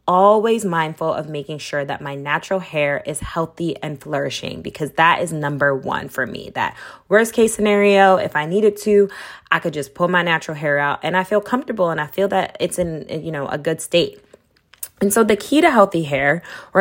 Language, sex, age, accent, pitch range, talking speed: English, female, 20-39, American, 150-200 Hz, 210 wpm